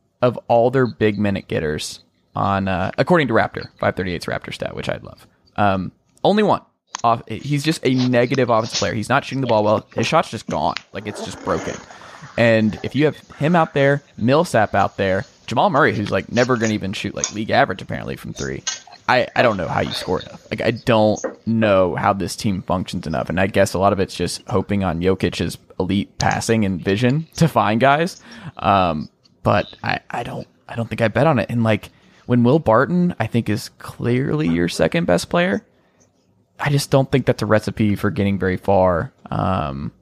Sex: male